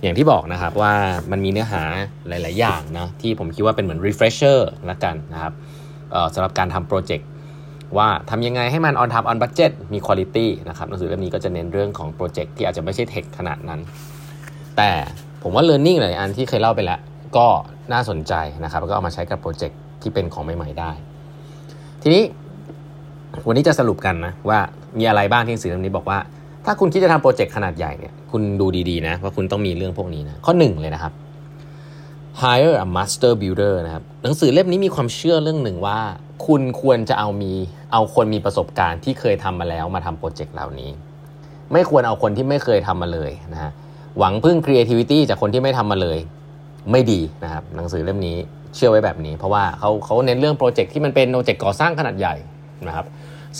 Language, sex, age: Thai, male, 20-39